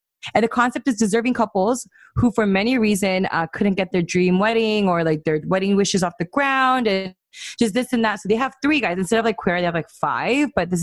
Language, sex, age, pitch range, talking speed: English, female, 20-39, 170-220 Hz, 245 wpm